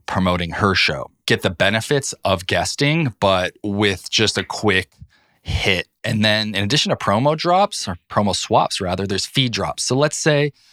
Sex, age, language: male, 20-39, English